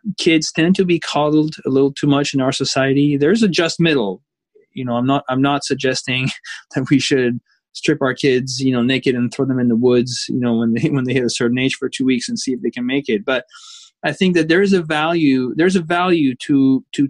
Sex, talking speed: male, 255 wpm